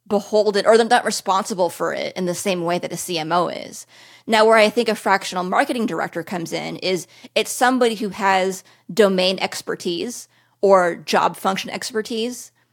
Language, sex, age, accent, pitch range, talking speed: English, female, 30-49, American, 180-215 Hz, 170 wpm